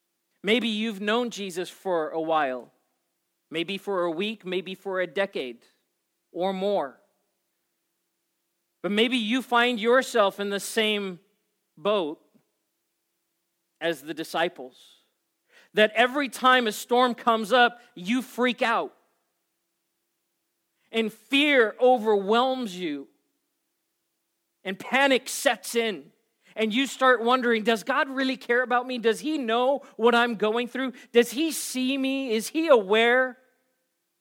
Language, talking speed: English, 125 wpm